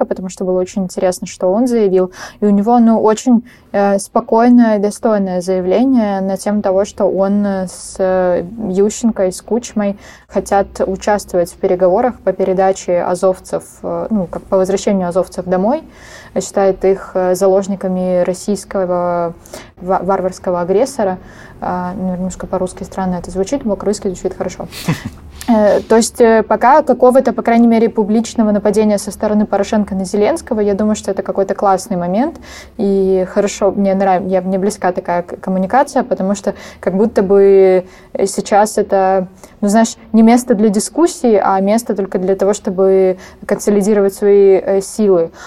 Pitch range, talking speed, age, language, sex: 185-210 Hz, 145 wpm, 20-39, Russian, female